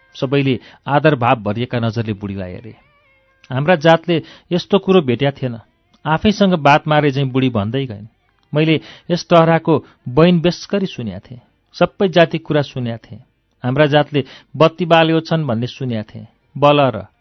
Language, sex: English, male